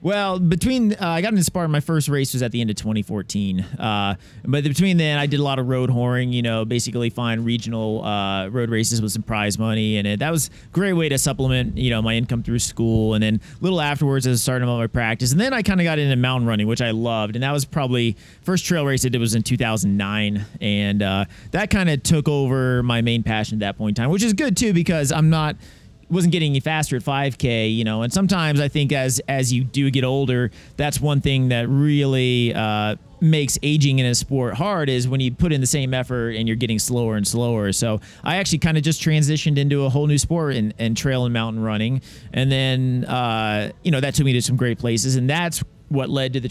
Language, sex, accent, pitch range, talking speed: English, male, American, 115-145 Hz, 245 wpm